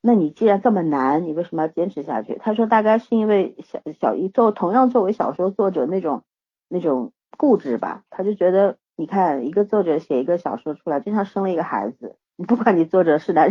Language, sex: Chinese, female